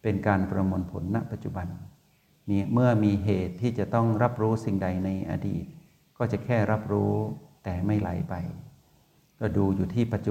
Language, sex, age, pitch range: Thai, male, 60-79, 95-115 Hz